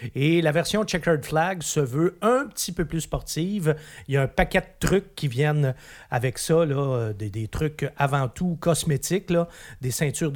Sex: male